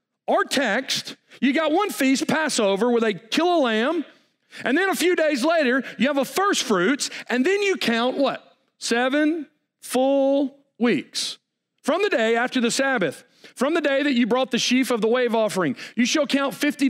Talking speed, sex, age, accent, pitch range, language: 190 wpm, male, 40-59, American, 220-285 Hz, English